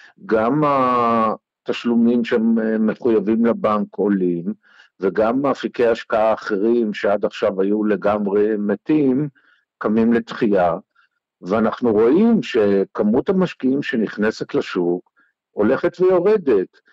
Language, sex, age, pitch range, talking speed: Hebrew, male, 50-69, 105-135 Hz, 85 wpm